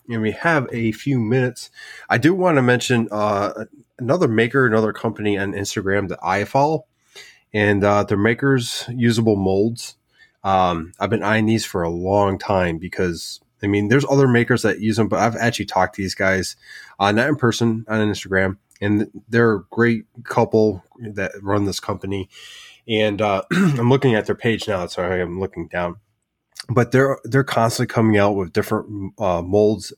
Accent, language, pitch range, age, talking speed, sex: American, English, 100-120 Hz, 20-39, 180 wpm, male